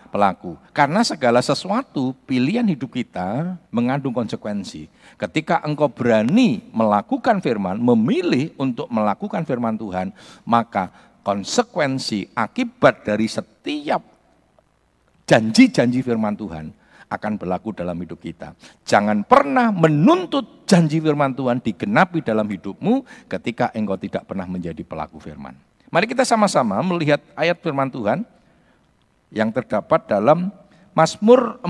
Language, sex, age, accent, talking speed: Indonesian, male, 50-69, native, 110 wpm